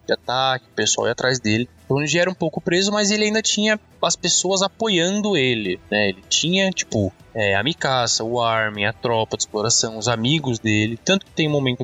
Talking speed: 225 wpm